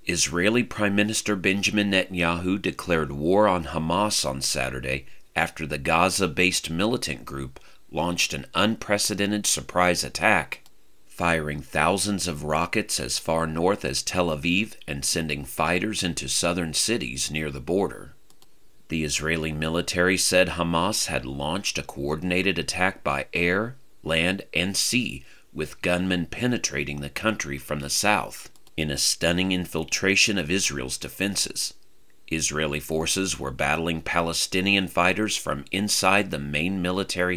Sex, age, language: male, 40-59, English